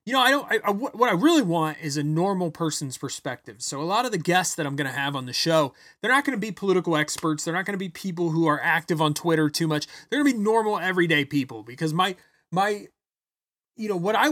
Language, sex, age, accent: English, male, 30-49, American